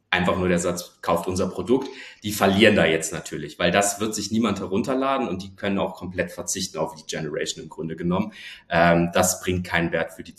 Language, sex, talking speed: German, male, 215 wpm